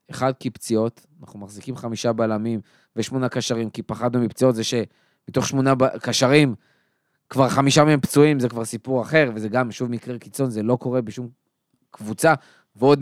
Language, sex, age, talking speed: Hebrew, male, 20-39, 165 wpm